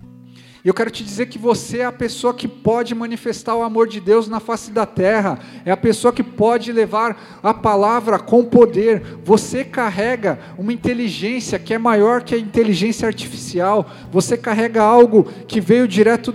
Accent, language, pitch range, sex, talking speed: Brazilian, Portuguese, 220-245 Hz, male, 175 wpm